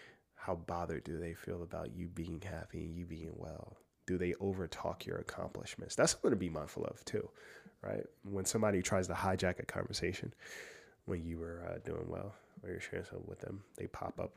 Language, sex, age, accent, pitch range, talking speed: English, male, 20-39, American, 90-120 Hz, 200 wpm